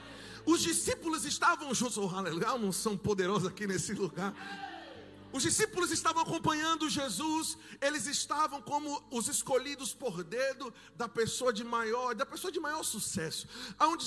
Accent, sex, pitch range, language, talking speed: Brazilian, male, 255-315 Hz, Portuguese, 140 wpm